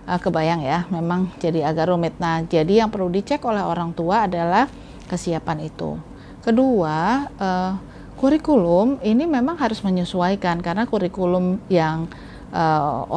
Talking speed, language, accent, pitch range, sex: 130 wpm, Indonesian, native, 170-215 Hz, female